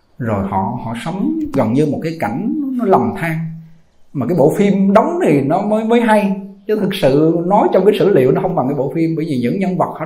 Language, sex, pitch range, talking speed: Vietnamese, male, 150-195 Hz, 250 wpm